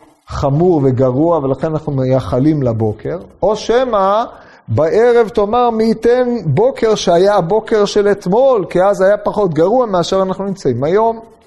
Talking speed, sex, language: 135 wpm, male, Hebrew